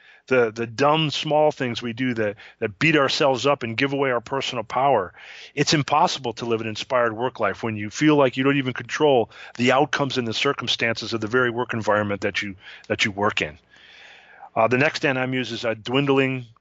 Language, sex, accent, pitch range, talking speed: English, male, American, 115-145 Hz, 205 wpm